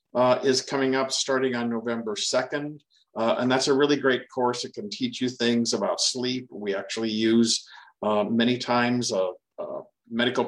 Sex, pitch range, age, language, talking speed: male, 115-135 Hz, 50-69, English, 180 wpm